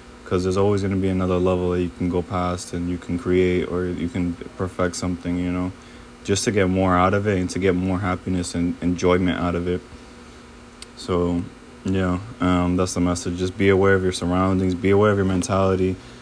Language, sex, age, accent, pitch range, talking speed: English, male, 20-39, American, 90-95 Hz, 220 wpm